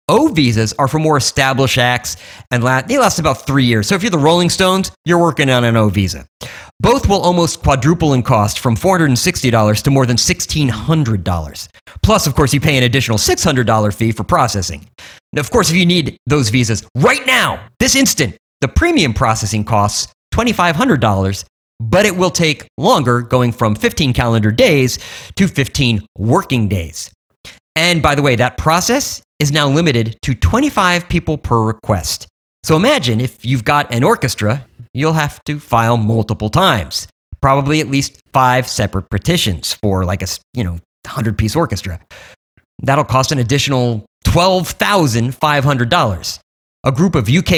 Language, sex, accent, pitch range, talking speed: English, male, American, 110-155 Hz, 180 wpm